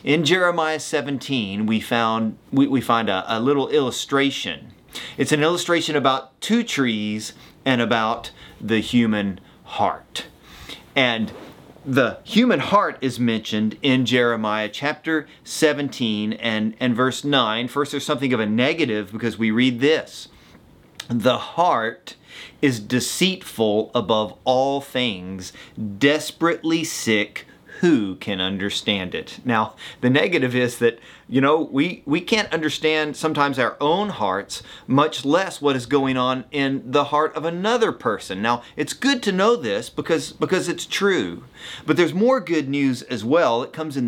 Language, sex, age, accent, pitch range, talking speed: English, male, 30-49, American, 110-155 Hz, 145 wpm